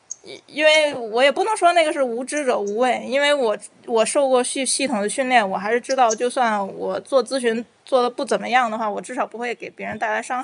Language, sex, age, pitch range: Chinese, female, 20-39, 205-255 Hz